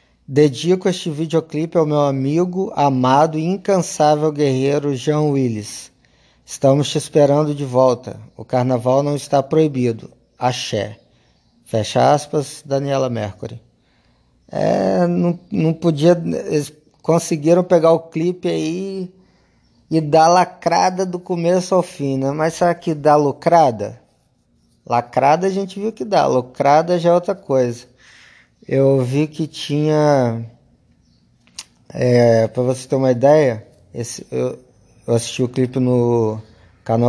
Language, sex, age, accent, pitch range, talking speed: Portuguese, male, 20-39, Brazilian, 120-155 Hz, 125 wpm